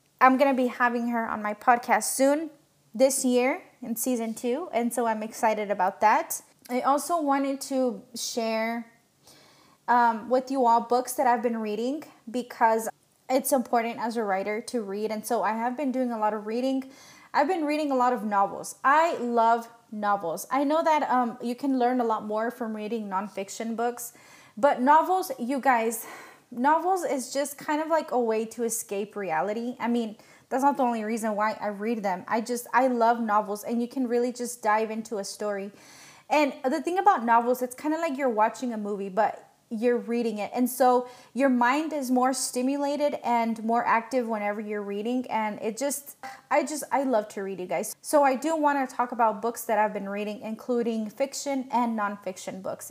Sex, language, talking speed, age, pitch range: female, English, 200 wpm, 20-39, 220-265 Hz